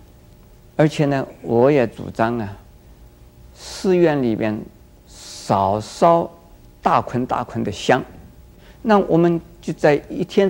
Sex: male